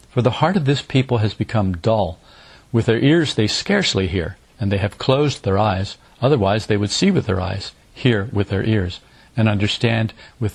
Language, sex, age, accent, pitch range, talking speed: English, male, 50-69, American, 100-120 Hz, 200 wpm